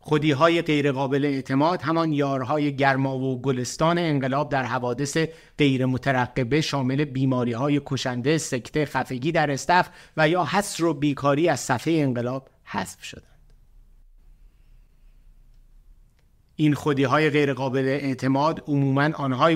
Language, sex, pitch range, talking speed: Persian, male, 130-155 Hz, 120 wpm